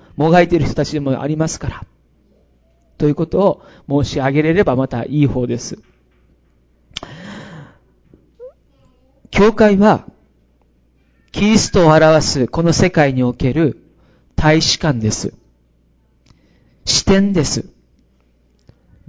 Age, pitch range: 40-59, 115-185 Hz